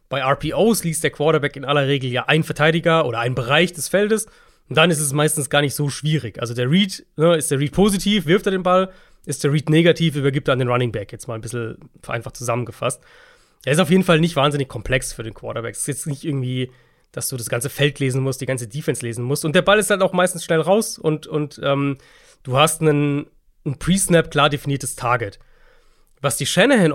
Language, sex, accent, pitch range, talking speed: German, male, German, 130-170 Hz, 225 wpm